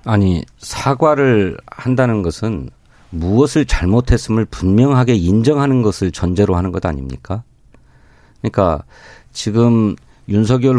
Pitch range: 95-135 Hz